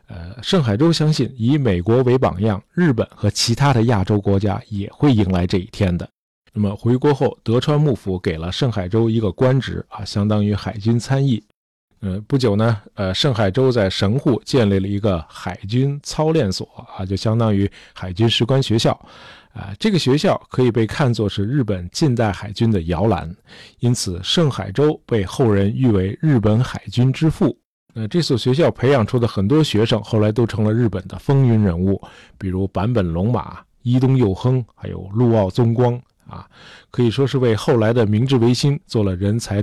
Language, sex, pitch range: Chinese, male, 100-130 Hz